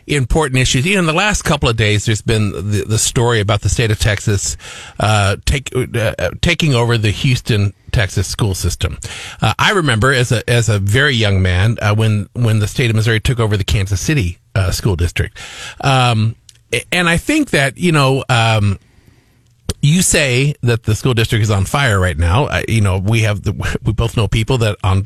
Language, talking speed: English, 205 wpm